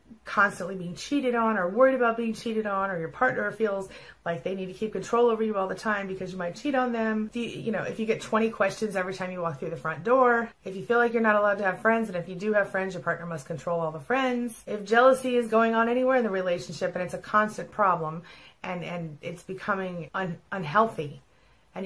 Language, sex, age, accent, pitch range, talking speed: English, female, 30-49, American, 175-225 Hz, 245 wpm